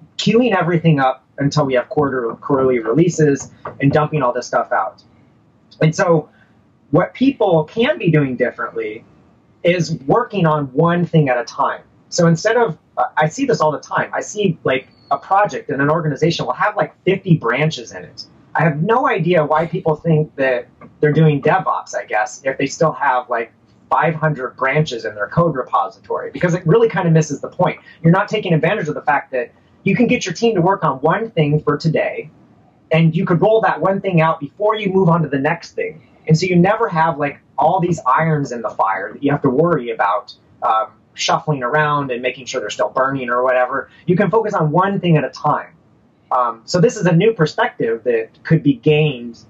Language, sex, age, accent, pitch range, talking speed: English, male, 30-49, American, 140-185 Hz, 210 wpm